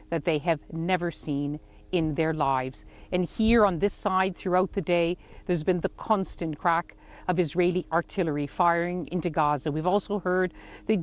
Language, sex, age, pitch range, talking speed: English, female, 50-69, 160-200 Hz, 170 wpm